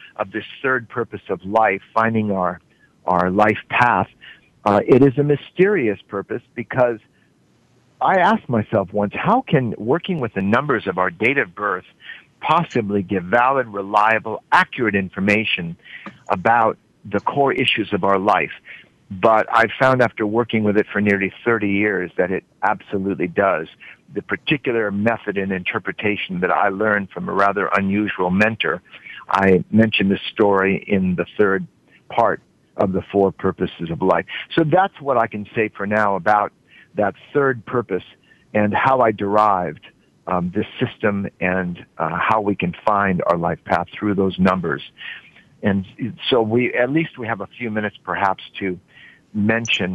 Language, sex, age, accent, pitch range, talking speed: English, male, 50-69, American, 95-115 Hz, 160 wpm